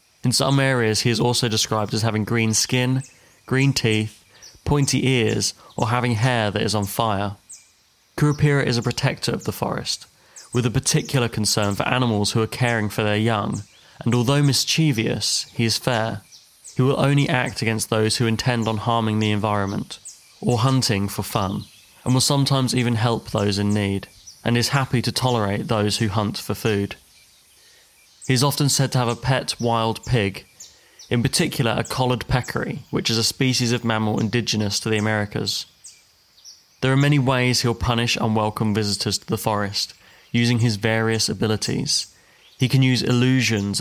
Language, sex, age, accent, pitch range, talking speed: English, male, 20-39, British, 110-125 Hz, 170 wpm